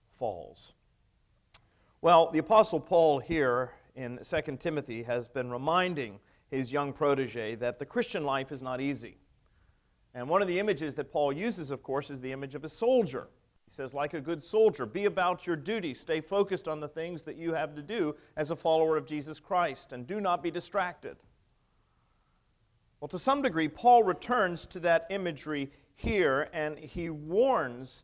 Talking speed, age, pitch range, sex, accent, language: 175 wpm, 40-59, 130-170 Hz, male, American, English